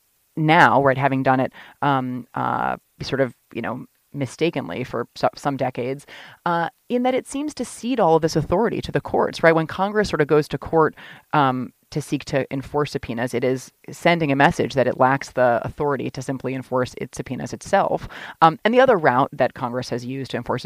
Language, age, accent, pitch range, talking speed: English, 30-49, American, 130-155 Hz, 200 wpm